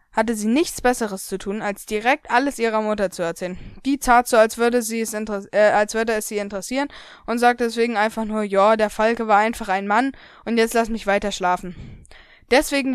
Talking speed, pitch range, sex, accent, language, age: 215 wpm, 210-245 Hz, female, German, German, 20-39